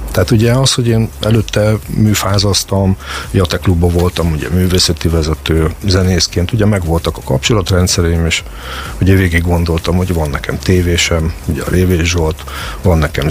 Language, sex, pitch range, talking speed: Hungarian, male, 80-100 Hz, 140 wpm